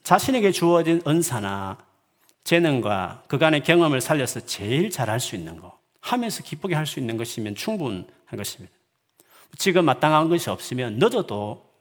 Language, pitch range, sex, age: Korean, 125-170 Hz, male, 40-59